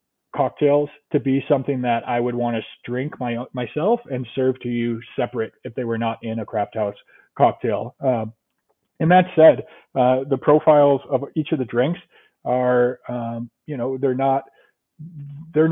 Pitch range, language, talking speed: 115-135 Hz, English, 170 wpm